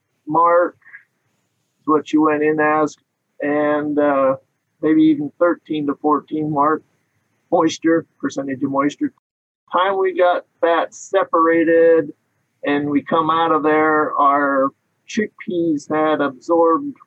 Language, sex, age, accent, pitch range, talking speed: English, male, 50-69, American, 145-175 Hz, 120 wpm